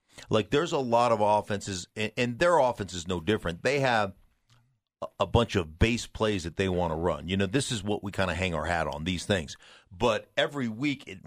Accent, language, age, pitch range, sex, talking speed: American, English, 40-59, 95-120 Hz, male, 235 wpm